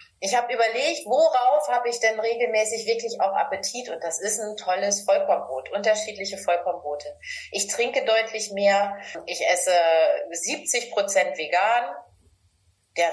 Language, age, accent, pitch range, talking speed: German, 30-49, German, 175-215 Hz, 130 wpm